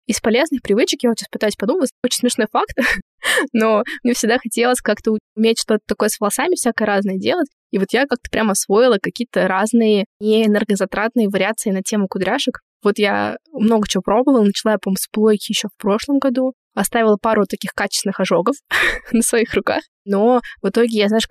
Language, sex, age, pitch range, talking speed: Russian, female, 20-39, 195-235 Hz, 180 wpm